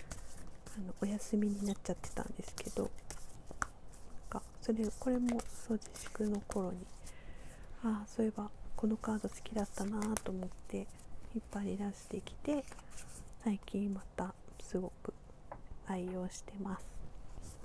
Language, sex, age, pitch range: Japanese, female, 40-59, 200-230 Hz